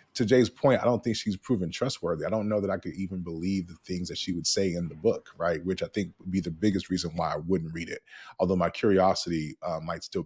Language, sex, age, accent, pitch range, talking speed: English, male, 20-39, American, 95-130 Hz, 270 wpm